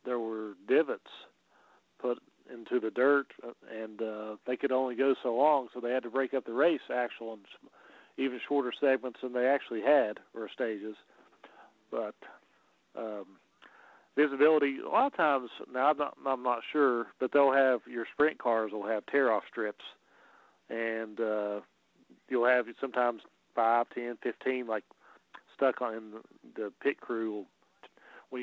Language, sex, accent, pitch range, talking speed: English, male, American, 115-135 Hz, 155 wpm